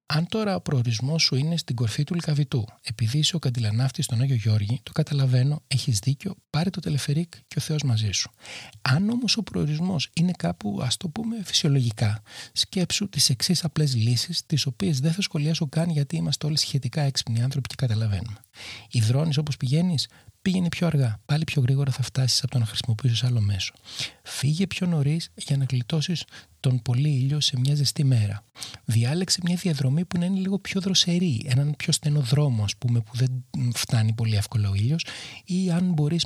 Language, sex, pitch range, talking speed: Greek, male, 120-160 Hz, 185 wpm